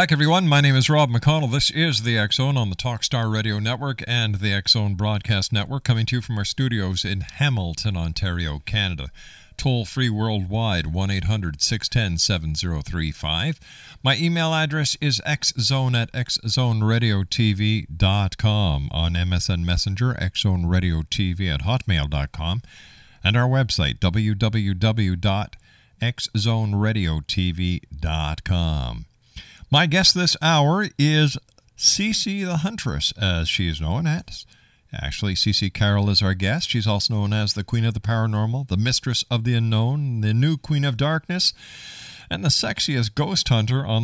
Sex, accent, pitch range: male, American, 95-130 Hz